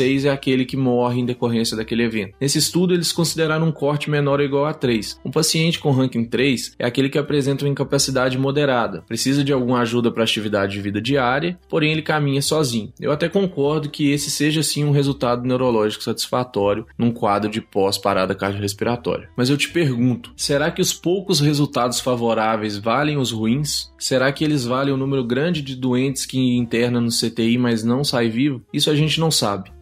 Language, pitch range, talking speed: Portuguese, 120-145 Hz, 190 wpm